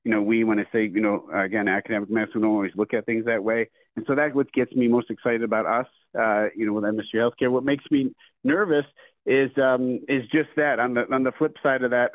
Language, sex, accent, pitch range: English, male, American, 115-135 Hz